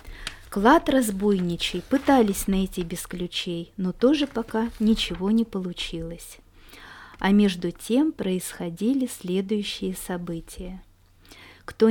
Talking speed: 95 wpm